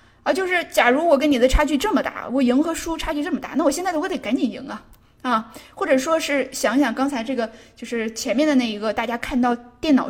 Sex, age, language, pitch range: female, 20-39, Chinese, 240-300 Hz